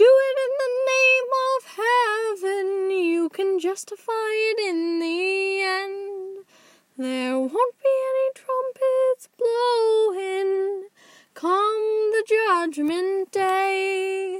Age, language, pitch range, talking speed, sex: 10-29, English, 255-380 Hz, 100 wpm, female